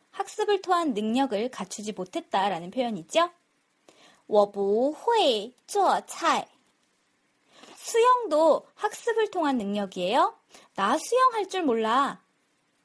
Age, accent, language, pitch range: 20-39, native, Korean, 225-370 Hz